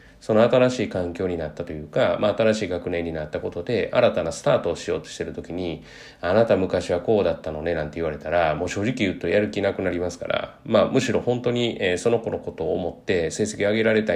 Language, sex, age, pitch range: Japanese, male, 30-49, 85-115 Hz